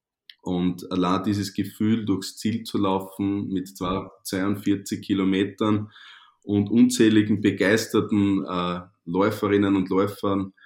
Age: 20-39